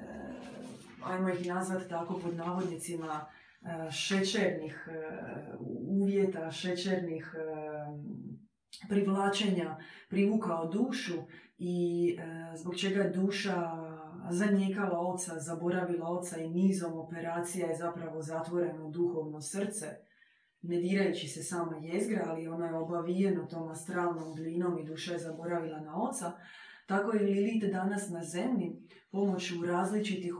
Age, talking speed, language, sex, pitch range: 20-39, 105 wpm, Croatian, female, 165-195 Hz